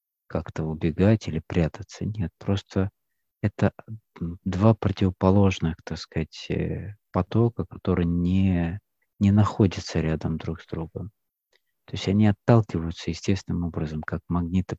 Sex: male